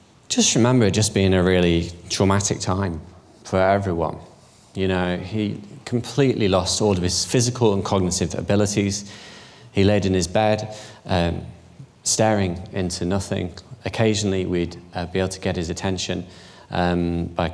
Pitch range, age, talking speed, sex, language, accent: 85-105 Hz, 20-39, 145 wpm, male, English, British